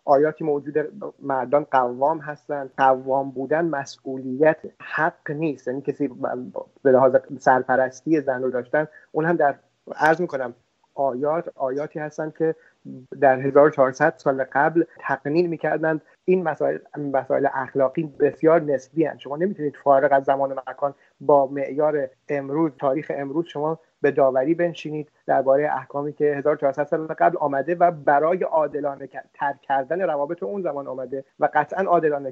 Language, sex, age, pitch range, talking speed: Persian, male, 30-49, 135-165 Hz, 140 wpm